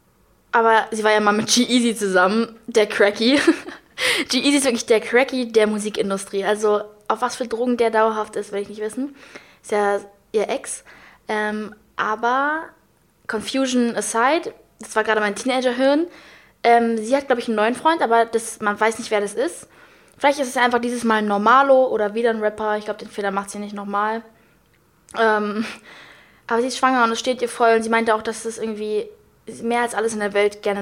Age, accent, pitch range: 20-39, German, 210-250 Hz